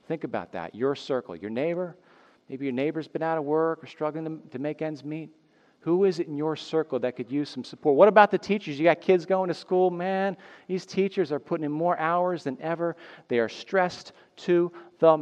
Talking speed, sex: 225 wpm, male